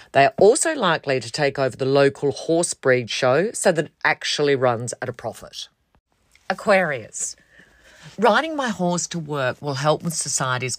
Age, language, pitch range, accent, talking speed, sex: 40-59, English, 125-165 Hz, Australian, 165 wpm, female